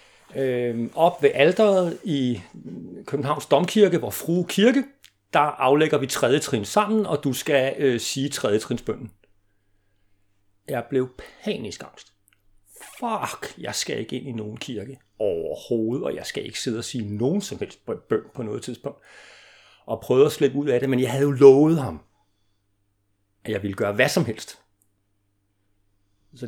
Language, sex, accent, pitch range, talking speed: Danish, male, native, 100-145 Hz, 160 wpm